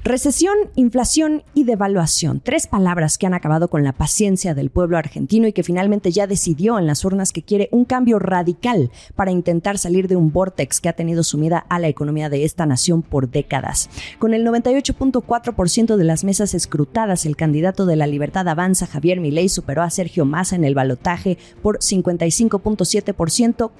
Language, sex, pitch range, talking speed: Spanish, female, 155-220 Hz, 175 wpm